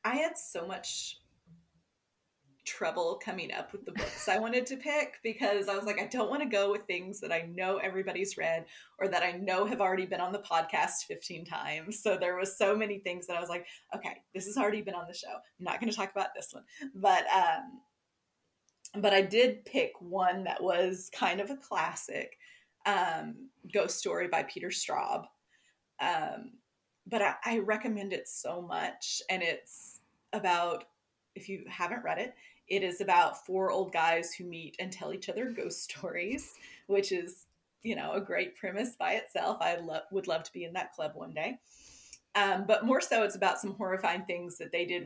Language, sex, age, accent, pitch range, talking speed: English, female, 20-39, American, 180-240 Hz, 200 wpm